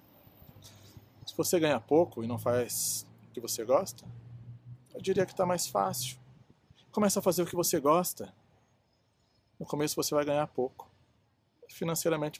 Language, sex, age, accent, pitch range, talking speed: Portuguese, male, 40-59, Brazilian, 120-155 Hz, 150 wpm